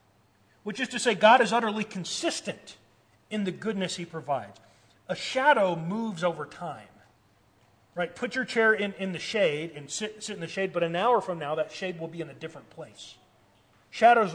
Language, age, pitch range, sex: English, 40-59, 120-190 Hz, male